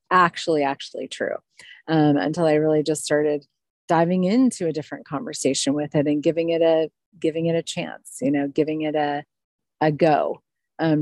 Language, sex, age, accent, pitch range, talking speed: English, female, 30-49, American, 145-165 Hz, 175 wpm